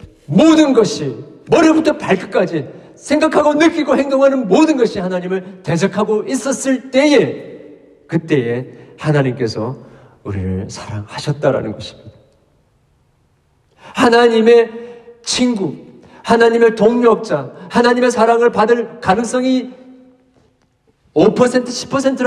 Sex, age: male, 40-59